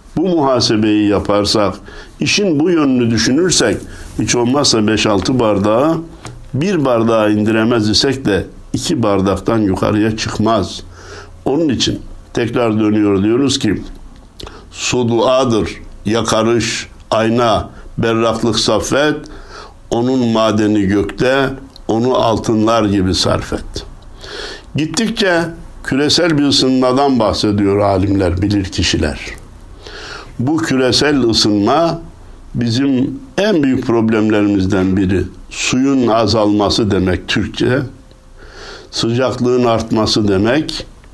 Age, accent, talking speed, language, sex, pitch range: 60-79, native, 90 wpm, Turkish, male, 100-125 Hz